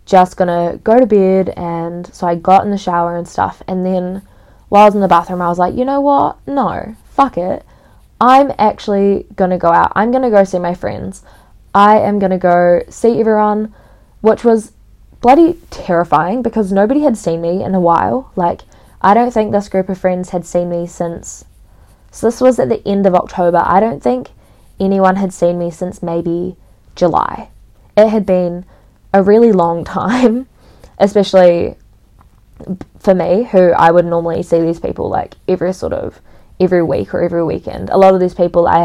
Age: 10-29